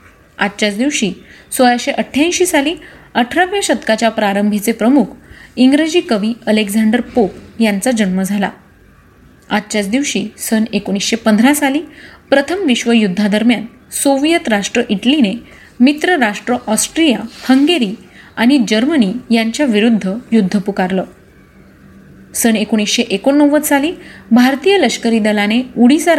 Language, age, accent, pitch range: Marathi, 30-49, native, 210-270 Hz